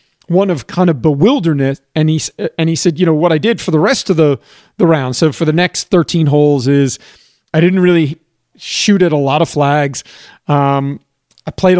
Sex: male